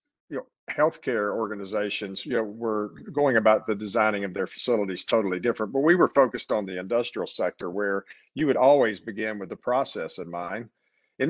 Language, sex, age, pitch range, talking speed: English, male, 50-69, 100-135 Hz, 175 wpm